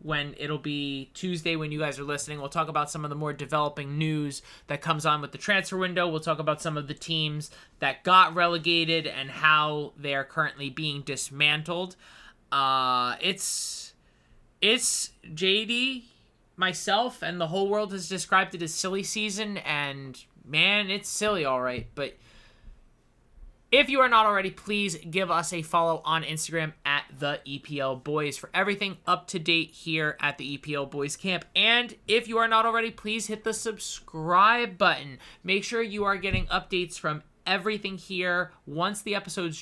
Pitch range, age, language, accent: 150-195 Hz, 20-39, English, American